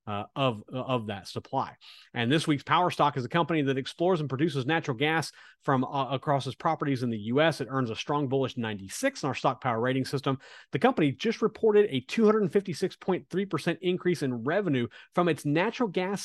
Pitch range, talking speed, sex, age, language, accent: 125-155 Hz, 195 wpm, male, 30-49, English, American